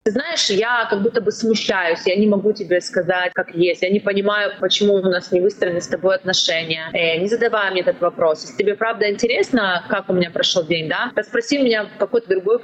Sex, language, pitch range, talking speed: female, Russian, 185-230 Hz, 225 wpm